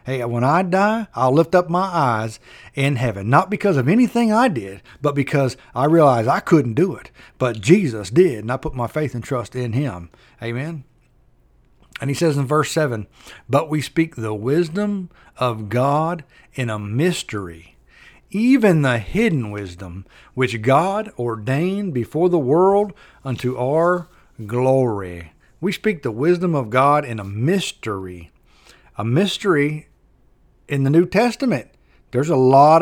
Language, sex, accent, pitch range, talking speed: English, male, American, 120-175 Hz, 155 wpm